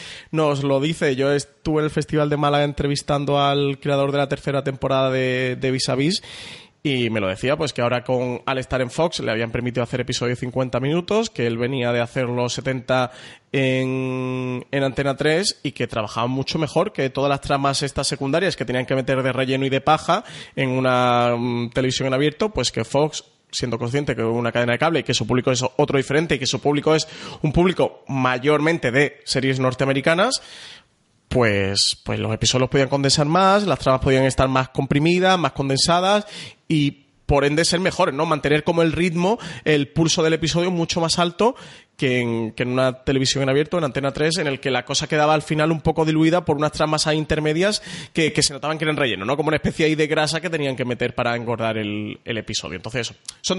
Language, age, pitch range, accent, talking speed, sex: Spanish, 20-39, 130-155 Hz, Spanish, 215 wpm, male